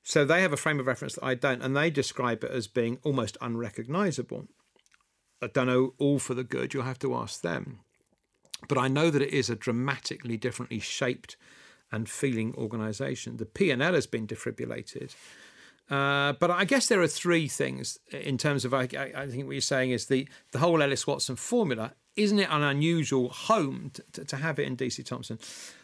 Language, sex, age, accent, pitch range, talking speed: English, male, 50-69, British, 125-145 Hz, 195 wpm